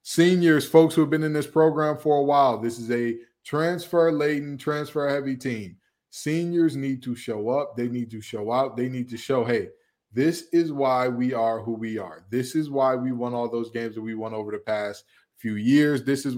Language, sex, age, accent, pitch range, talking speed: English, male, 20-39, American, 115-145 Hz, 215 wpm